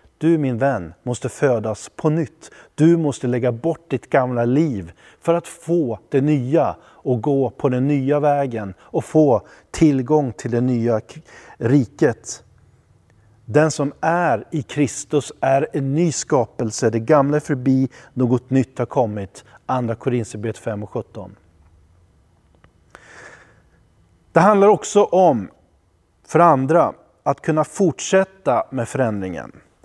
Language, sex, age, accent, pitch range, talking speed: Swedish, male, 30-49, native, 110-160 Hz, 130 wpm